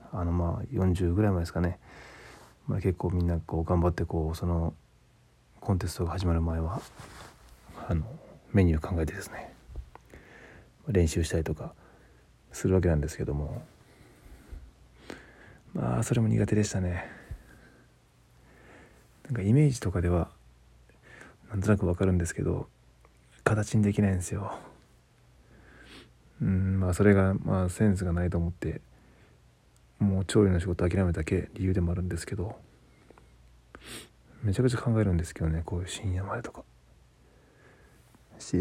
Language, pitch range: Japanese, 80-100 Hz